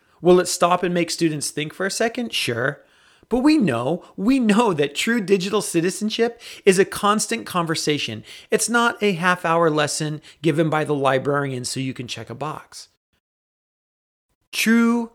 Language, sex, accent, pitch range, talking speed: English, male, American, 140-190 Hz, 160 wpm